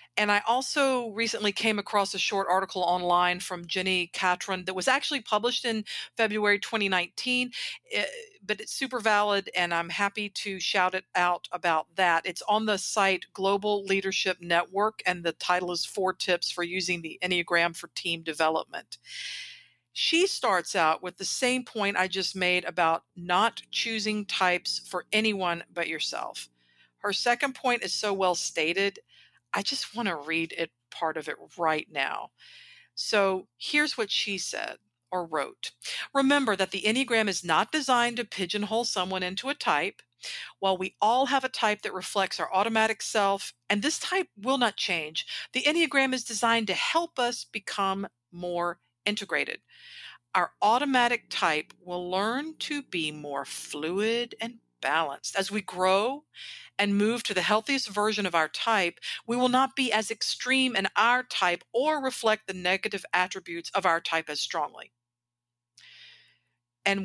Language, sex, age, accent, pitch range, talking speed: English, female, 50-69, American, 180-230 Hz, 160 wpm